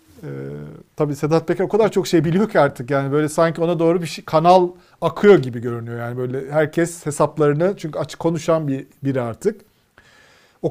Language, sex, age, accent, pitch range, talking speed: Turkish, male, 40-59, native, 135-170 Hz, 185 wpm